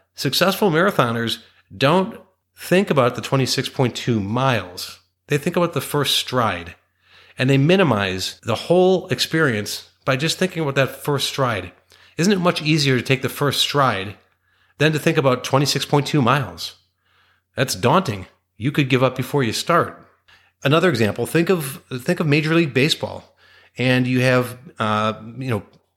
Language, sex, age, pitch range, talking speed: English, male, 40-59, 110-145 Hz, 165 wpm